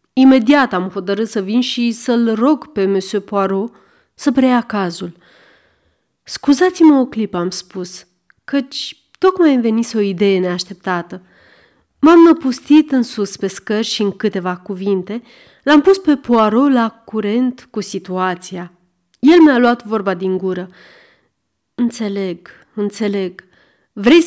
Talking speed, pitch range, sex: 130 wpm, 190-265 Hz, female